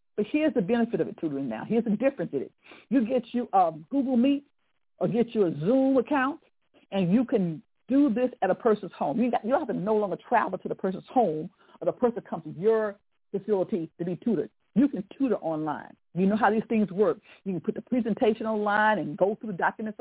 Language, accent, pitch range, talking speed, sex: English, American, 185-240 Hz, 230 wpm, female